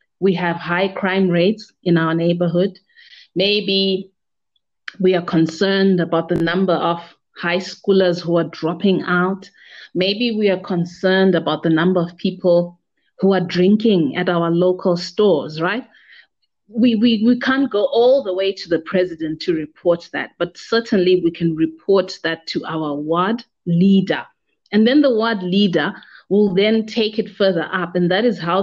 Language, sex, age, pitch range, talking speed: English, female, 30-49, 175-200 Hz, 165 wpm